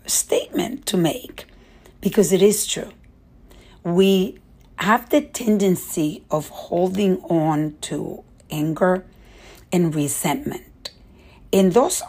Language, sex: English, female